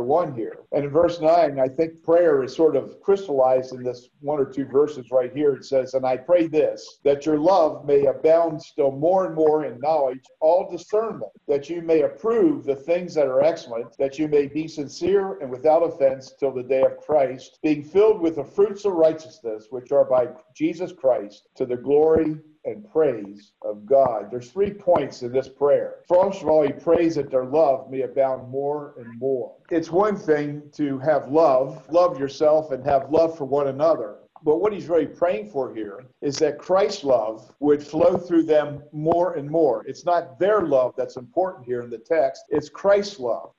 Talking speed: 200 wpm